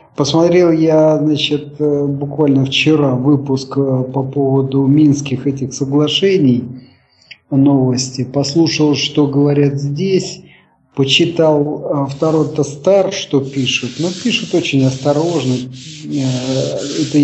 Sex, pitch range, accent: male, 135-165 Hz, native